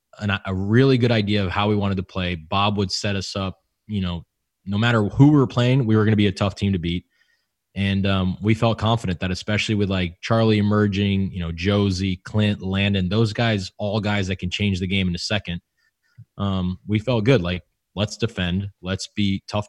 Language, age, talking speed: English, 20-39, 220 wpm